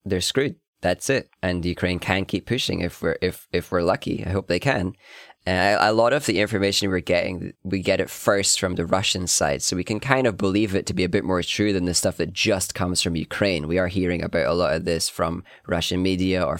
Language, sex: English, male